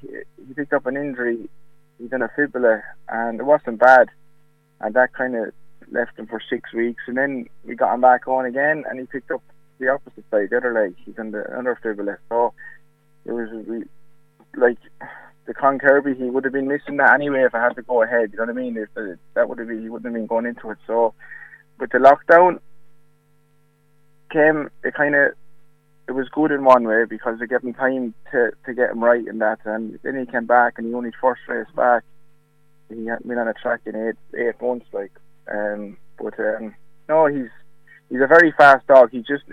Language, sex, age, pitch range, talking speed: English, male, 20-39, 115-150 Hz, 215 wpm